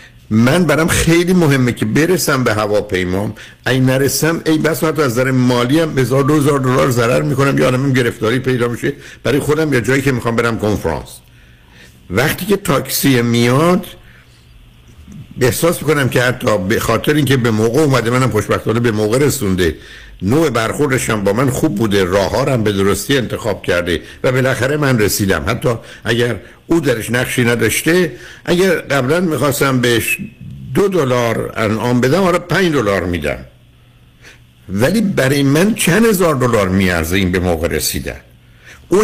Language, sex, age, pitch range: Persian, male, 60-79, 105-150 Hz